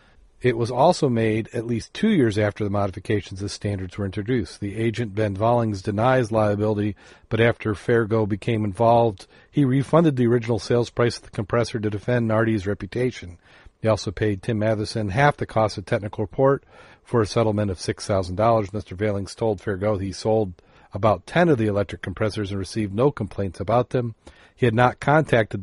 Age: 40-59